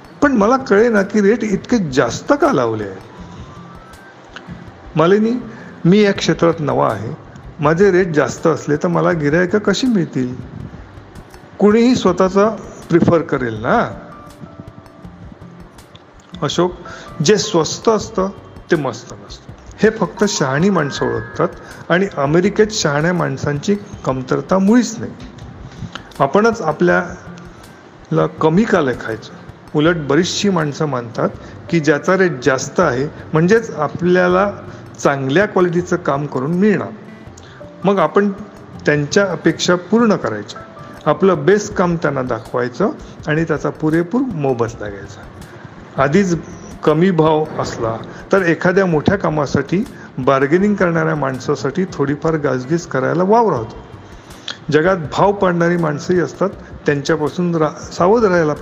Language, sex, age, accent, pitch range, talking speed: Marathi, male, 40-59, native, 140-190 Hz, 115 wpm